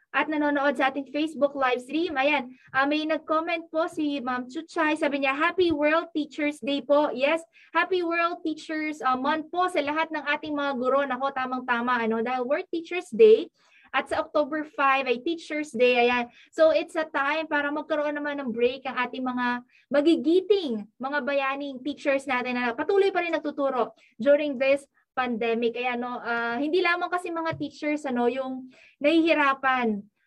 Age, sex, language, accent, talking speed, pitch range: 20-39, female, Filipino, native, 170 wpm, 255-315 Hz